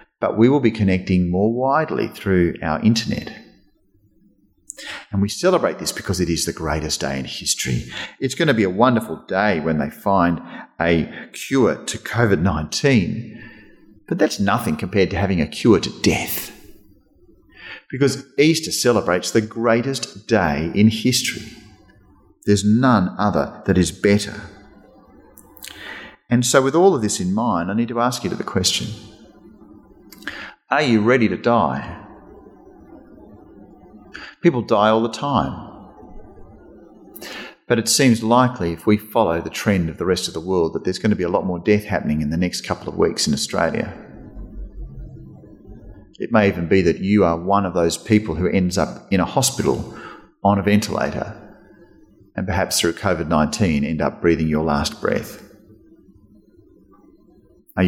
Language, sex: English, male